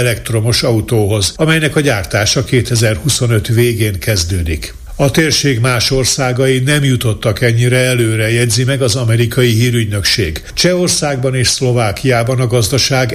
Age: 60-79